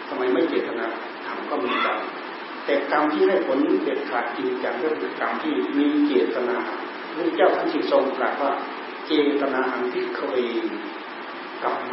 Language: Thai